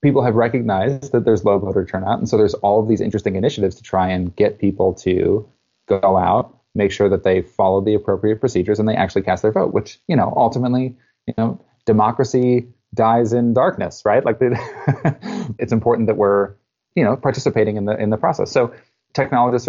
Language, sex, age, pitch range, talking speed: English, male, 30-49, 100-120 Hz, 195 wpm